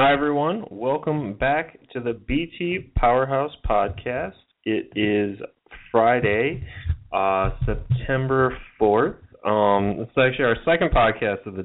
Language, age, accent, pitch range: English, 20-39, American, 100-130 Hz